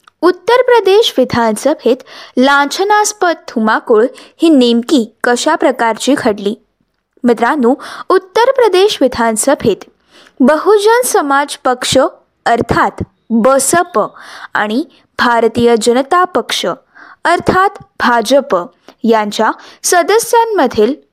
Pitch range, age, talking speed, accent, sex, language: 235-360 Hz, 20-39, 75 wpm, native, female, Marathi